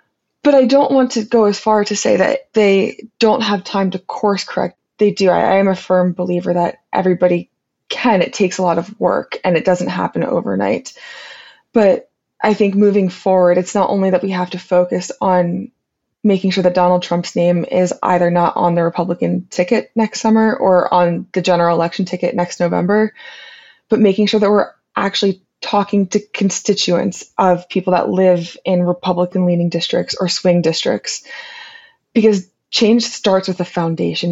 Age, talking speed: 20-39, 180 wpm